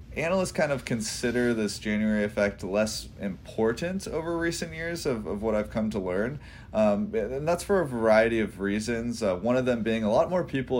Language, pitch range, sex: English, 105-140 Hz, male